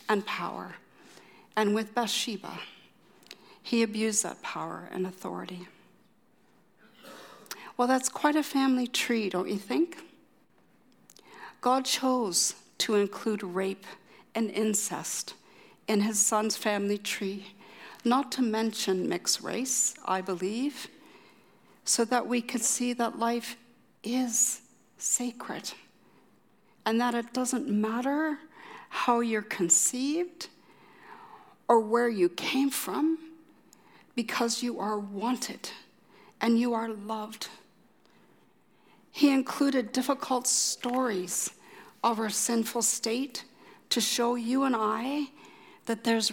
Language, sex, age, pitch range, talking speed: English, female, 60-79, 215-255 Hz, 110 wpm